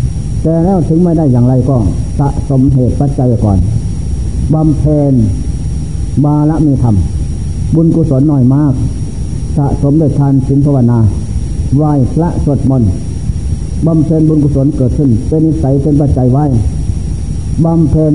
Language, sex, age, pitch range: Thai, male, 60-79, 115-150 Hz